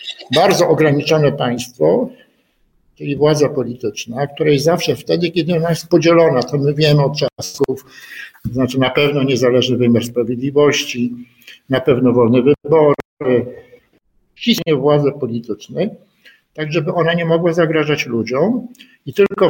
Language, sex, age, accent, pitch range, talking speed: Polish, male, 50-69, native, 135-165 Hz, 125 wpm